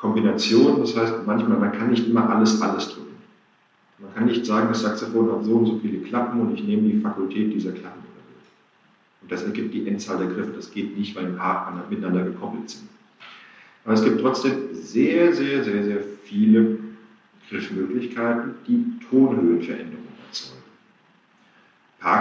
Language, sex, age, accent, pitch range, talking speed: German, male, 50-69, German, 110-170 Hz, 165 wpm